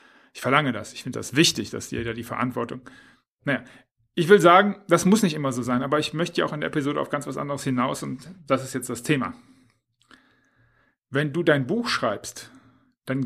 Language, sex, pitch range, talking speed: German, male, 125-170 Hz, 215 wpm